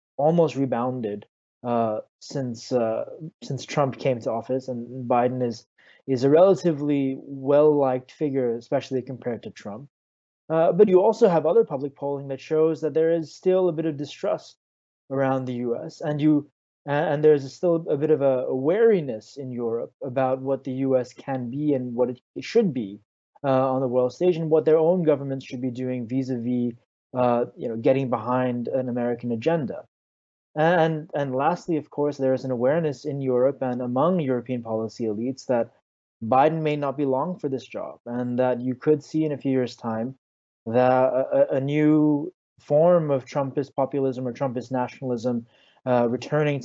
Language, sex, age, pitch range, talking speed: English, male, 20-39, 125-150 Hz, 185 wpm